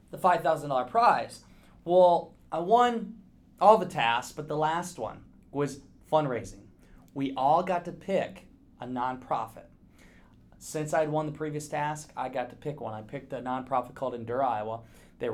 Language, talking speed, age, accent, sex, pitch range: English, 170 wpm, 20-39, American, male, 140-185 Hz